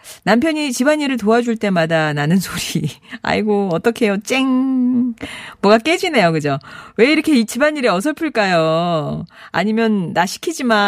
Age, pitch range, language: 40-59, 175-280 Hz, Korean